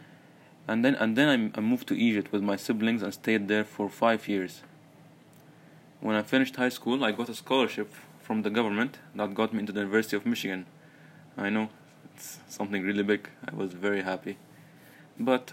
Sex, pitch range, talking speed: male, 100-130 Hz, 195 wpm